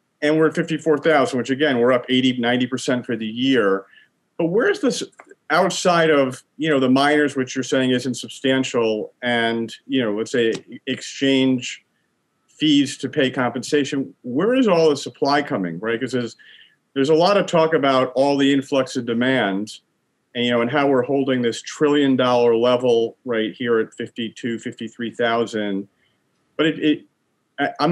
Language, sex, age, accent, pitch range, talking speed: English, male, 40-59, American, 120-145 Hz, 170 wpm